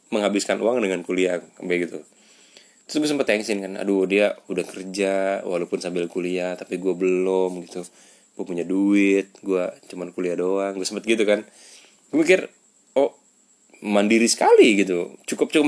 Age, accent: 20-39, native